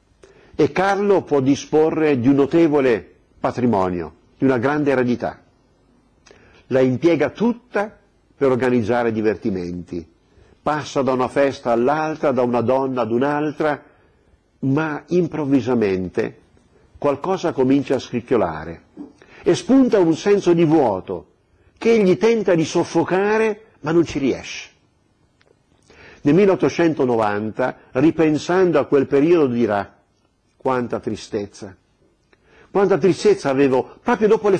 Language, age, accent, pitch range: Italian, 50-69, native, 125-190 Hz